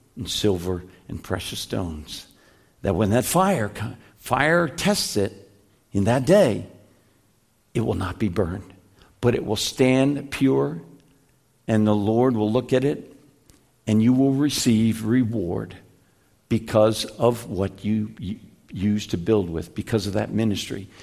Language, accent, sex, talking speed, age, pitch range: English, American, male, 140 wpm, 60-79, 110-145 Hz